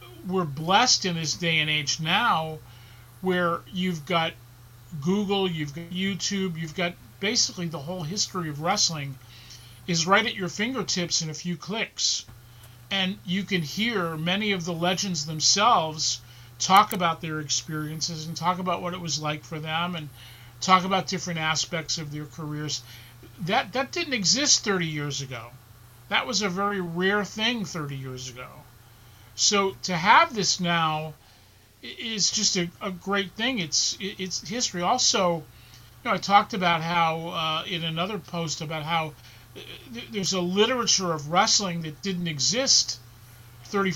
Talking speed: 155 wpm